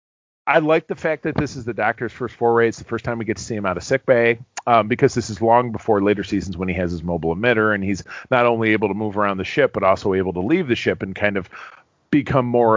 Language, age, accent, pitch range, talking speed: English, 40-59, American, 105-140 Hz, 280 wpm